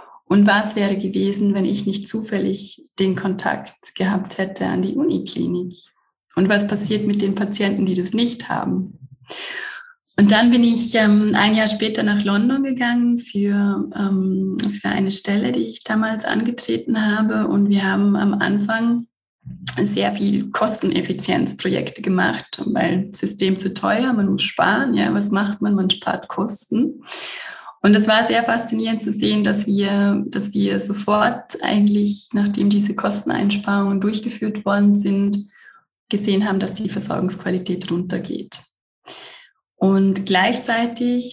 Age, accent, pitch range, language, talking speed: 20-39, German, 195-220 Hz, German, 135 wpm